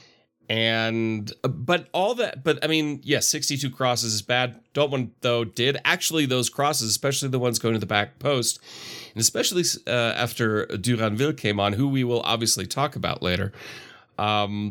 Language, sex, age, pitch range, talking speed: English, male, 30-49, 105-130 Hz, 180 wpm